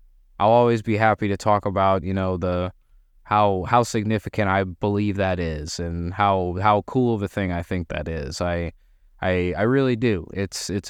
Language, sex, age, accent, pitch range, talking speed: English, male, 20-39, American, 100-120 Hz, 195 wpm